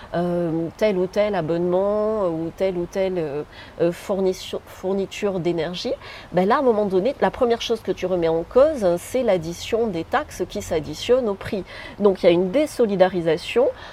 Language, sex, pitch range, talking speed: French, female, 175-215 Hz, 170 wpm